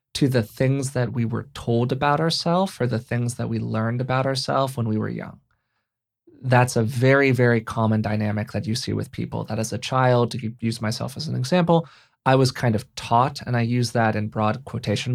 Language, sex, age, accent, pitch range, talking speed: English, male, 20-39, American, 110-135 Hz, 215 wpm